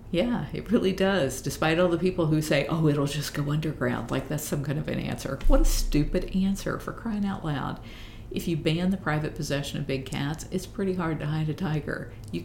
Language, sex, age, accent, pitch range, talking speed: English, female, 50-69, American, 115-160 Hz, 225 wpm